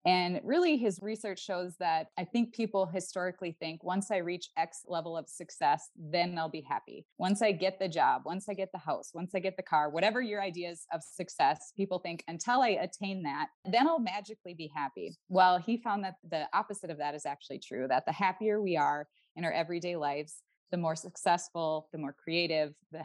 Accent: American